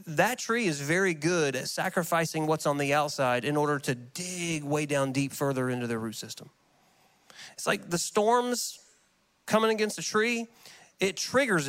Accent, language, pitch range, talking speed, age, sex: American, English, 155-210 Hz, 170 wpm, 30-49, male